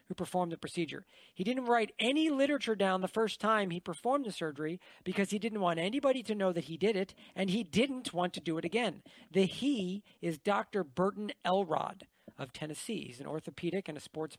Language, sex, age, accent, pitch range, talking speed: English, male, 40-59, American, 175-230 Hz, 210 wpm